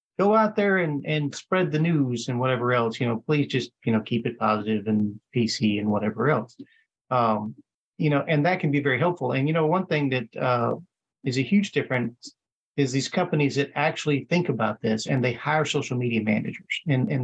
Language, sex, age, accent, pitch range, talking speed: English, male, 40-59, American, 130-195 Hz, 210 wpm